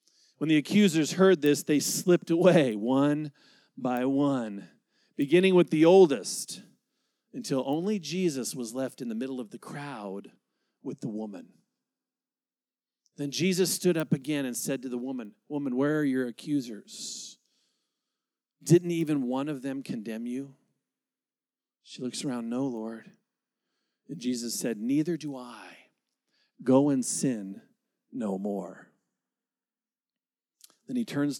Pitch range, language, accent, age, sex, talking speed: 130-190 Hz, English, American, 40-59, male, 135 wpm